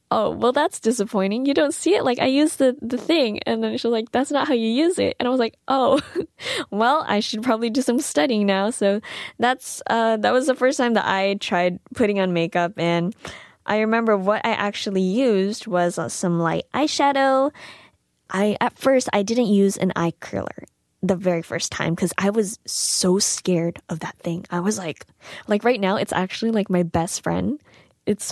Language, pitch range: Korean, 185-240 Hz